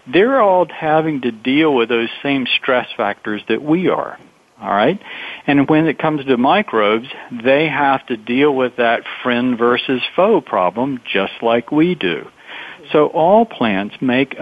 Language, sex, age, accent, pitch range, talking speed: English, male, 50-69, American, 120-150 Hz, 160 wpm